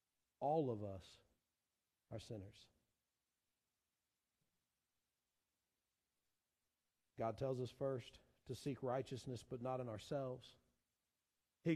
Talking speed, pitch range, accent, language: 85 wpm, 155-215 Hz, American, English